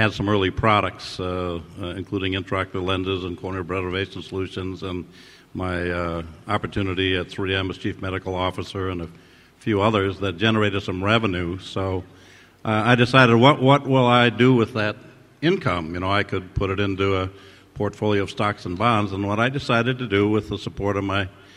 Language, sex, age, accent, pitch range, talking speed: English, male, 50-69, American, 95-120 Hz, 185 wpm